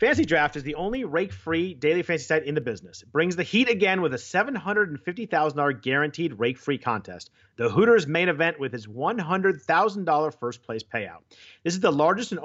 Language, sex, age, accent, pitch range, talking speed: English, male, 40-59, American, 125-170 Hz, 195 wpm